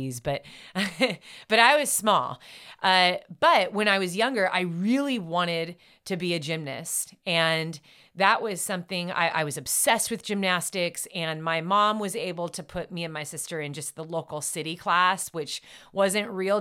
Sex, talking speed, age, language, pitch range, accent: female, 175 wpm, 30-49, English, 155-195 Hz, American